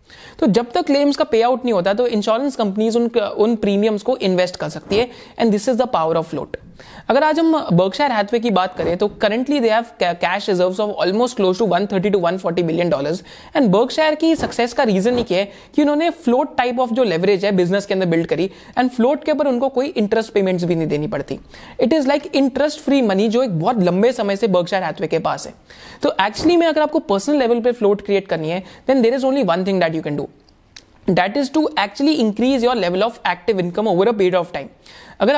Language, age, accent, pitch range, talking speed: Hindi, 20-39, native, 185-265 Hz, 135 wpm